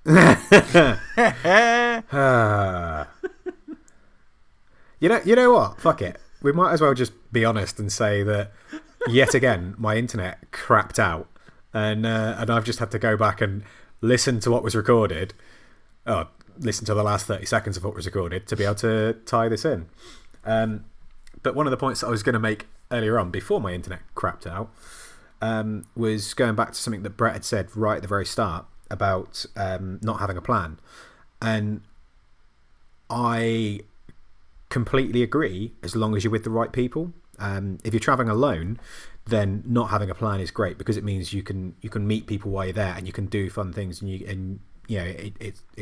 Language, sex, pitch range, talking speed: English, male, 95-115 Hz, 190 wpm